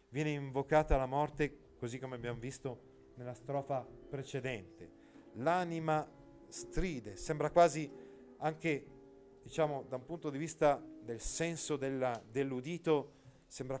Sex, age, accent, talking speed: male, 40-59, native, 115 wpm